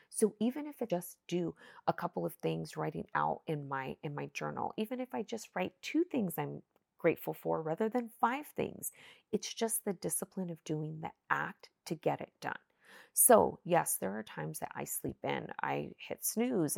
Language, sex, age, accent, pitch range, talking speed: English, female, 30-49, American, 150-210 Hz, 195 wpm